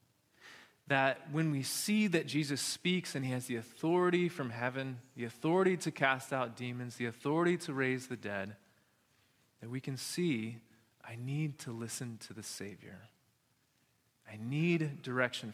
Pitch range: 130-195 Hz